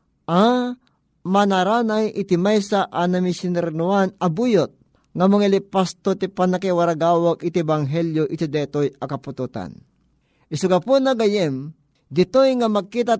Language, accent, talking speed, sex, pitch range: Filipino, native, 115 wpm, male, 165-210 Hz